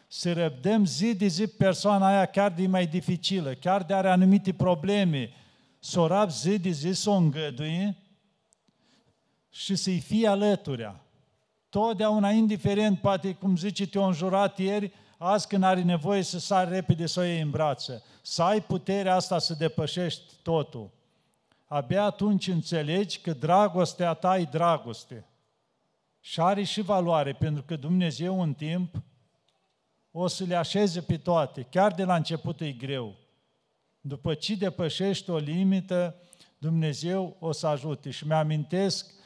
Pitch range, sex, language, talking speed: 155-190 Hz, male, Romanian, 140 wpm